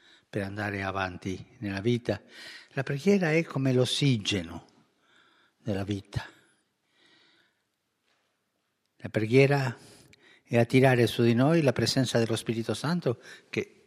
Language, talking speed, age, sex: Italian, 110 wpm, 60-79, male